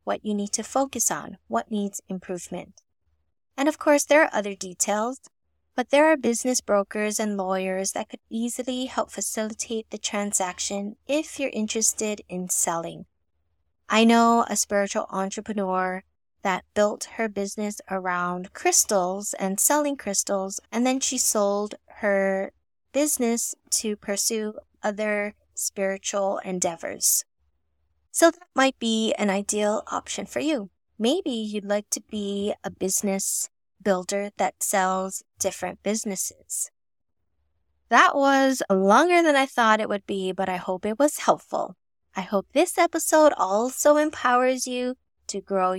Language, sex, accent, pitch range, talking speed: English, female, American, 190-255 Hz, 140 wpm